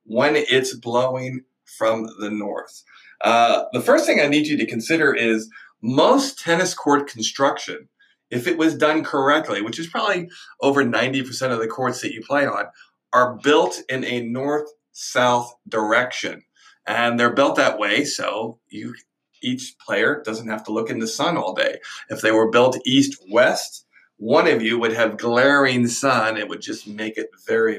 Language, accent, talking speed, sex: English, American, 175 wpm, male